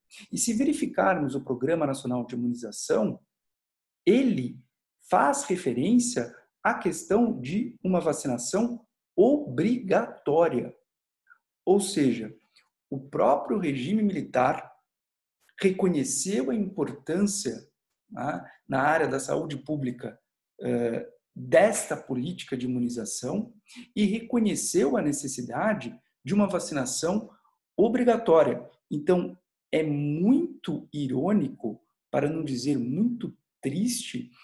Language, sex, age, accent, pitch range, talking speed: Portuguese, male, 50-69, Brazilian, 130-210 Hz, 90 wpm